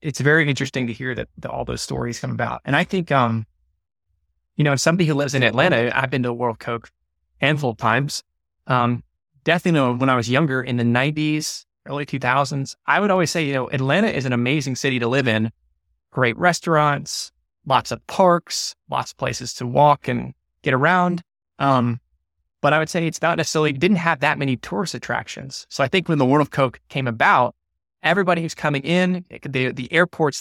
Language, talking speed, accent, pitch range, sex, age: English, 200 wpm, American, 120-155 Hz, male, 20-39